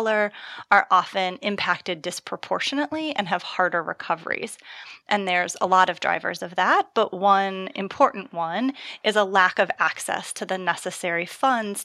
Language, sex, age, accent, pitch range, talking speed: English, female, 30-49, American, 185-215 Hz, 145 wpm